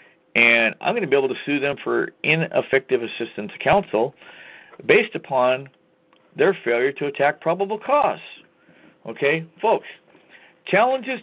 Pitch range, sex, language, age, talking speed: 120-170 Hz, male, English, 50-69, 135 wpm